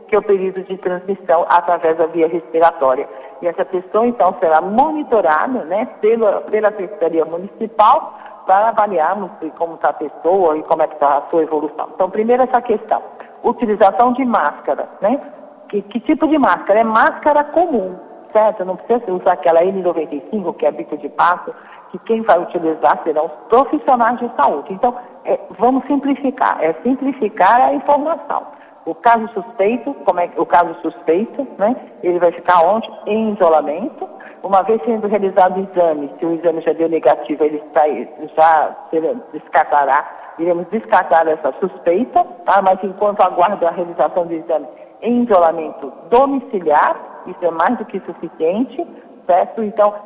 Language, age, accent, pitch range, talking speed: Portuguese, 50-69, Brazilian, 165-225 Hz, 160 wpm